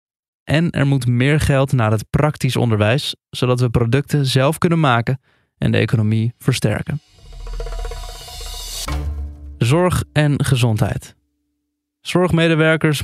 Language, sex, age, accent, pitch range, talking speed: Dutch, male, 20-39, Dutch, 115-150 Hz, 105 wpm